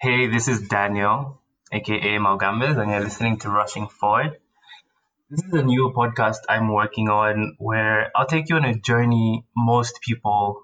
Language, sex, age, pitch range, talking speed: English, male, 20-39, 105-120 Hz, 165 wpm